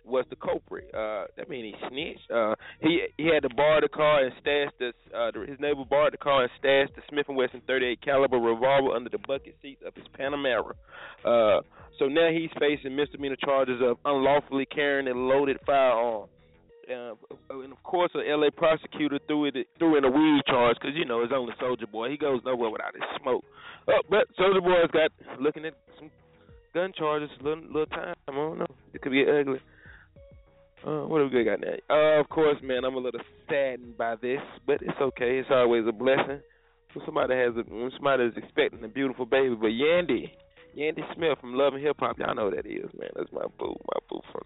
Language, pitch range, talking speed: English, 125-155 Hz, 210 wpm